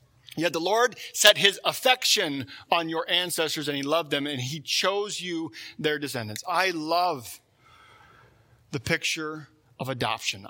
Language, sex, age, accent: English, male, 40-59, American